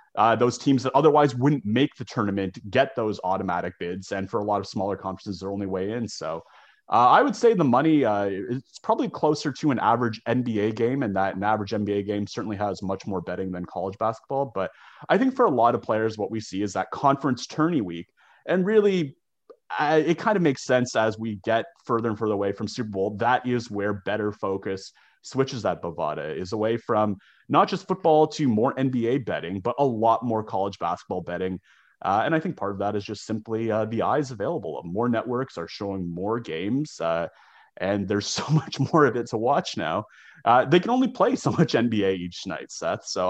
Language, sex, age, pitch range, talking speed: English, male, 30-49, 100-135 Hz, 215 wpm